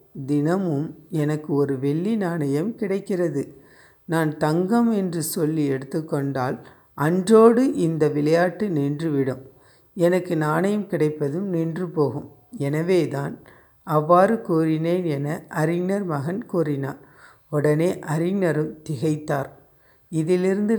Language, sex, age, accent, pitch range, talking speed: Tamil, female, 60-79, native, 145-180 Hz, 90 wpm